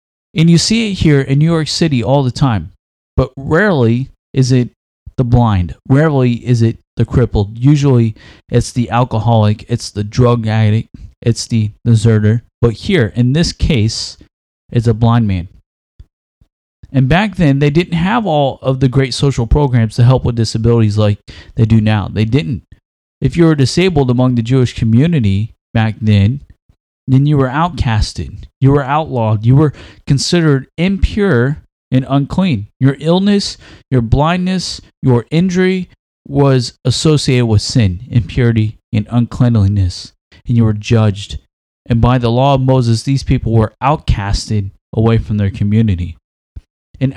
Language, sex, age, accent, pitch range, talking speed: English, male, 30-49, American, 105-135 Hz, 155 wpm